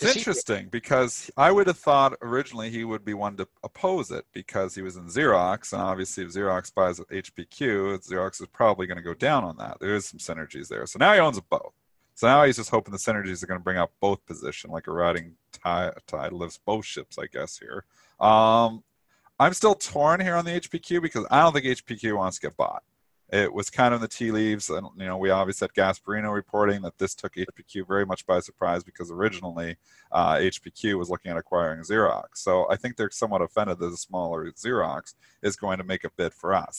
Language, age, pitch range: English, 40-59, 90-115 Hz